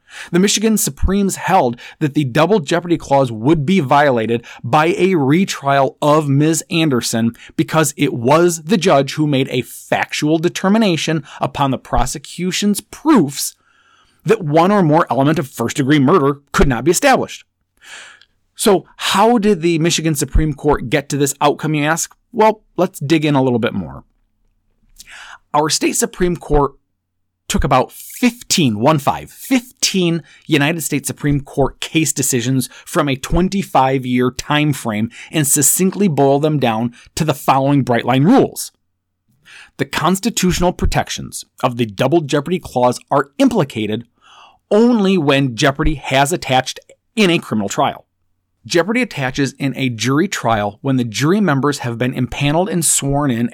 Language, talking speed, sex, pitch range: English, 145 wpm, male, 130-175 Hz